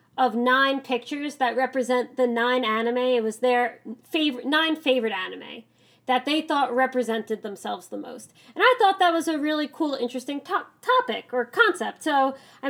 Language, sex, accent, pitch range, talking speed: English, female, American, 245-305 Hz, 175 wpm